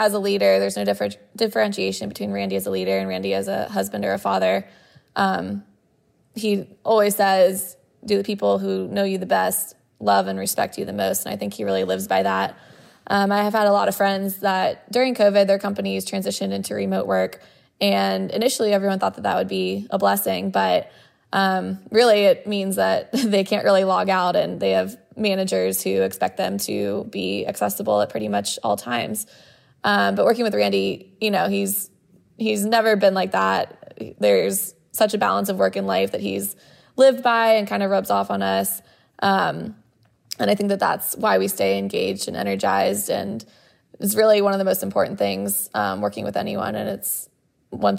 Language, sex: English, female